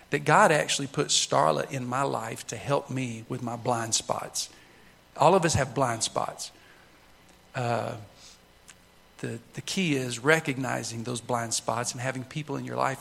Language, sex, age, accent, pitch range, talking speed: English, male, 50-69, American, 115-140 Hz, 165 wpm